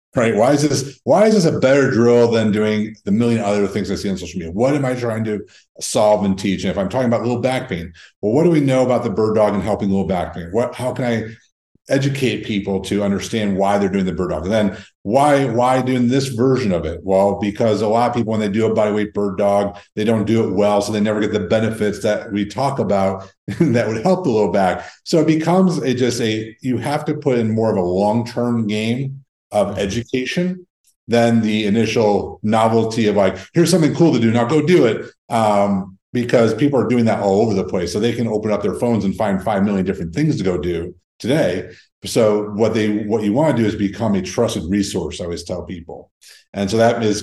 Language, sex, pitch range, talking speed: English, male, 100-120 Hz, 240 wpm